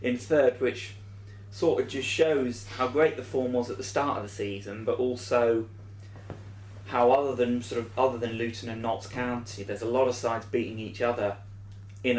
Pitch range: 100-120 Hz